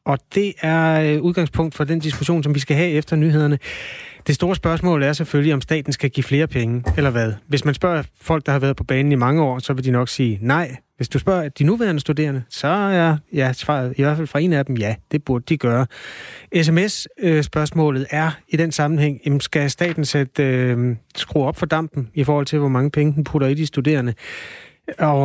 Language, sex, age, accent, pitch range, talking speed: Danish, male, 30-49, native, 135-165 Hz, 215 wpm